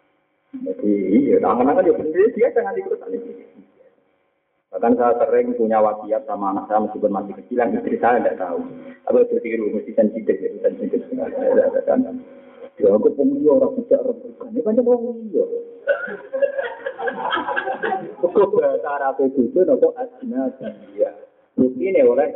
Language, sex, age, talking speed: Indonesian, male, 50-69, 80 wpm